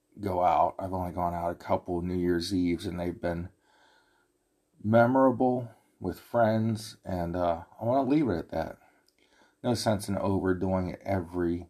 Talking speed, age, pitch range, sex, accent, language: 165 wpm, 50-69, 90-110 Hz, male, American, English